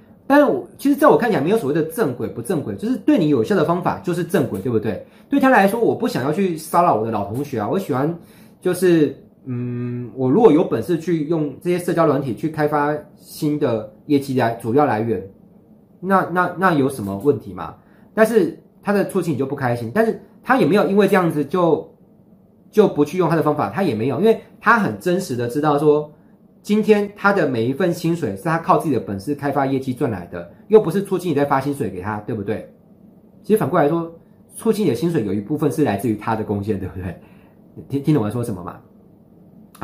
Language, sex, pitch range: Chinese, male, 125-200 Hz